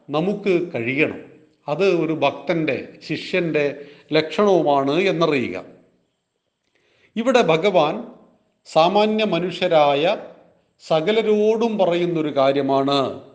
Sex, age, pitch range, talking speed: male, 40-59, 150-195 Hz, 65 wpm